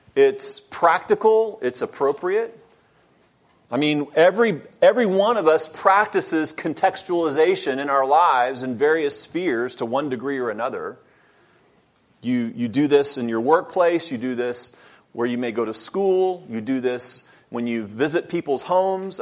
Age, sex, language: 40-59, male, English